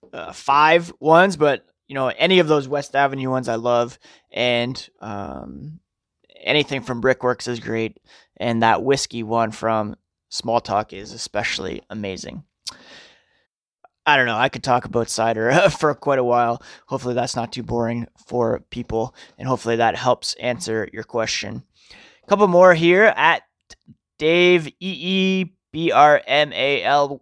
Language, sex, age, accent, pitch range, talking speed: English, male, 20-39, American, 125-160 Hz, 150 wpm